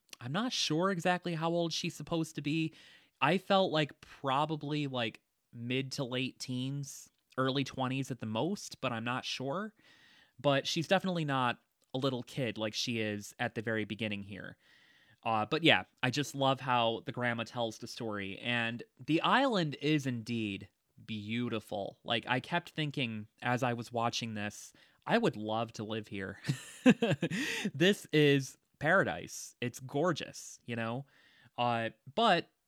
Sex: male